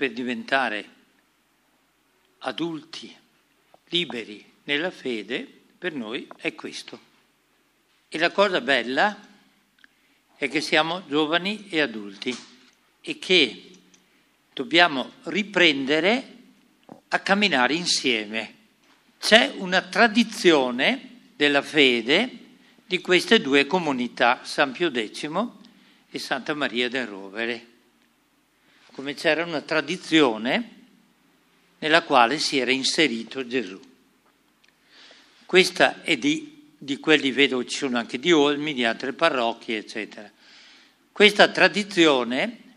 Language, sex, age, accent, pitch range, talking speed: Italian, male, 50-69, native, 130-200 Hz, 100 wpm